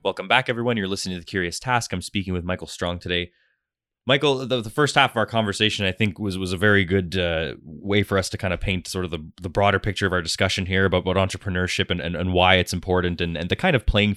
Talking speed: 265 wpm